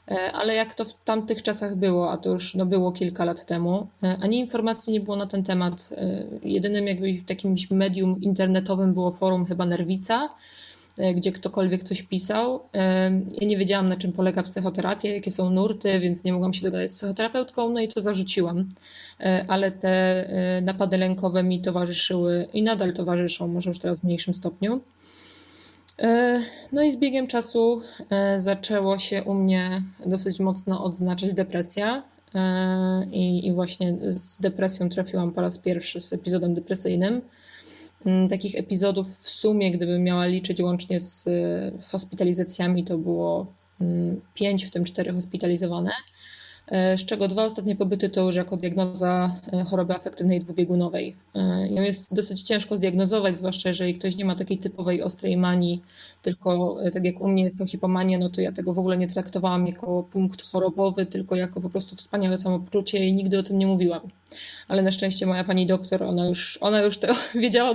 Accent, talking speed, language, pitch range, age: native, 160 wpm, Polish, 180-200 Hz, 20-39